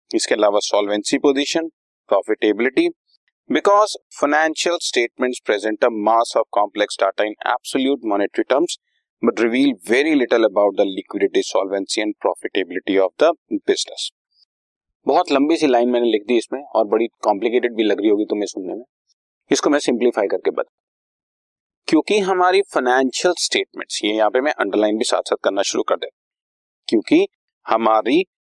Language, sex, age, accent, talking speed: Hindi, male, 30-49, native, 80 wpm